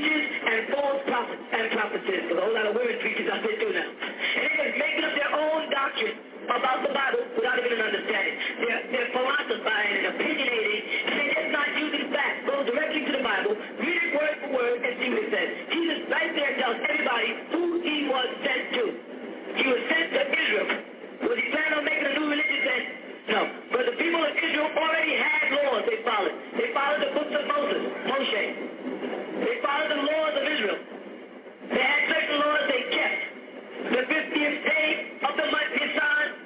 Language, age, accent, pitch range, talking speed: English, 40-59, American, 285-320 Hz, 190 wpm